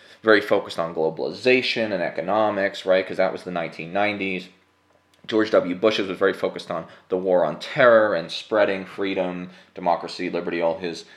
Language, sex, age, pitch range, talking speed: English, male, 20-39, 90-130 Hz, 160 wpm